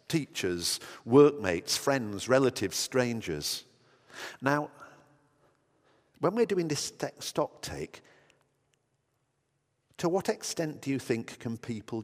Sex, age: male, 50-69